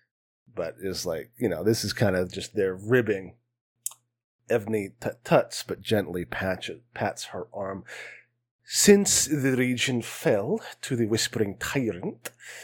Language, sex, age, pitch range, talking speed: English, male, 30-49, 110-130 Hz, 135 wpm